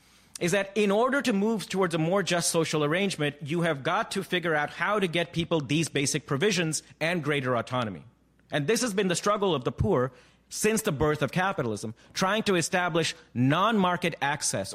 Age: 40-59